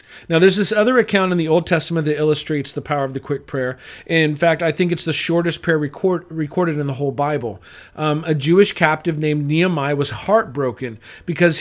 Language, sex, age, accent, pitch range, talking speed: English, male, 40-59, American, 150-190 Hz, 205 wpm